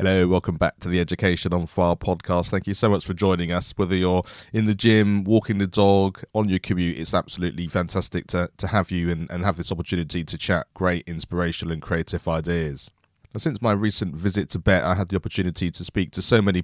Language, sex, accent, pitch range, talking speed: English, male, British, 85-105 Hz, 220 wpm